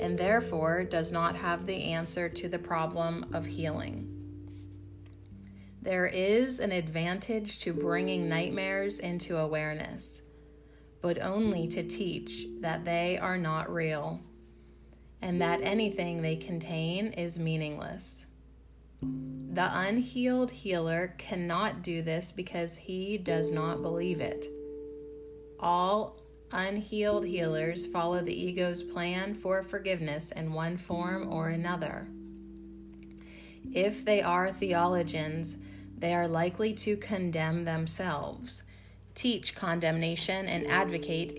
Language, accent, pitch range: English, American, 145-180 Hz